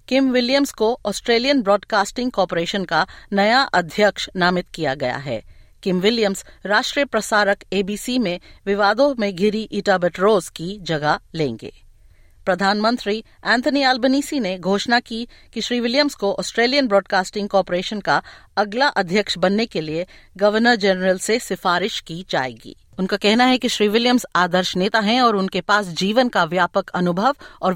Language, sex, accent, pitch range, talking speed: Hindi, female, native, 185-240 Hz, 150 wpm